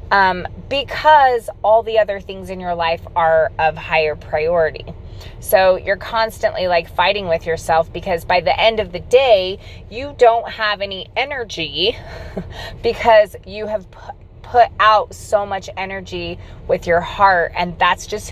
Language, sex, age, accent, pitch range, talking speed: English, female, 30-49, American, 170-225 Hz, 150 wpm